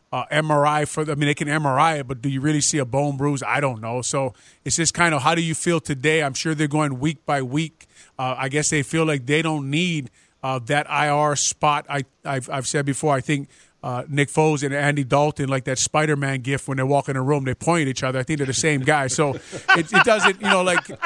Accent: American